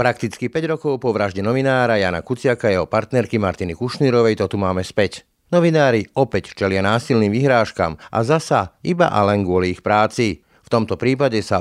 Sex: male